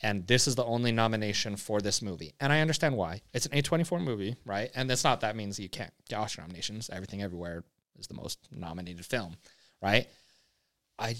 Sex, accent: male, American